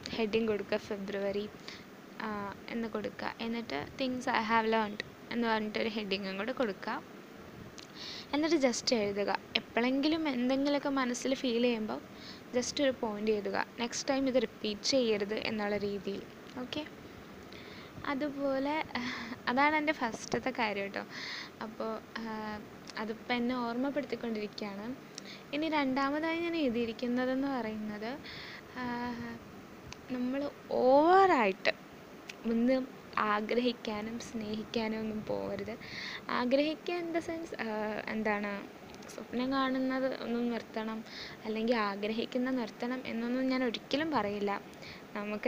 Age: 20-39